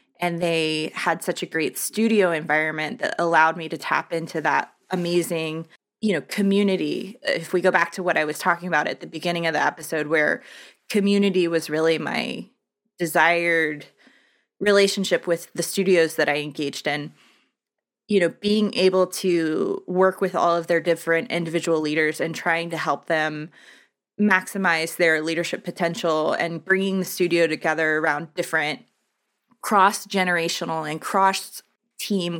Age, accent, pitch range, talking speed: 20-39, American, 160-190 Hz, 150 wpm